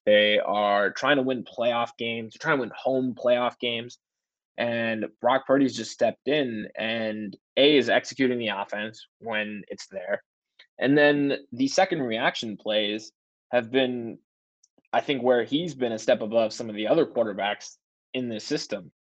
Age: 20-39